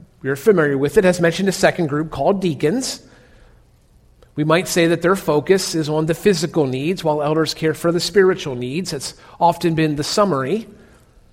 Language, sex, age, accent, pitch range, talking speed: English, male, 40-59, American, 140-185 Hz, 185 wpm